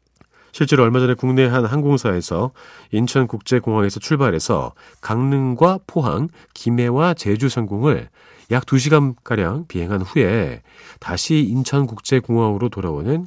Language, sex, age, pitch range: Korean, male, 40-59, 95-135 Hz